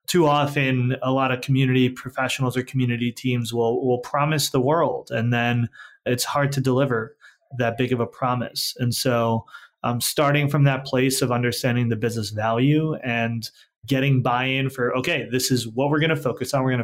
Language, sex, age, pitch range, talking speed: English, male, 30-49, 120-140 Hz, 190 wpm